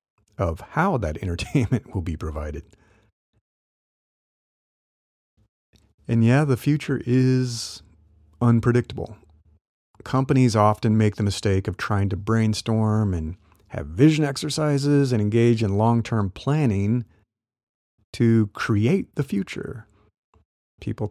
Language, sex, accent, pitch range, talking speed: English, male, American, 95-120 Hz, 100 wpm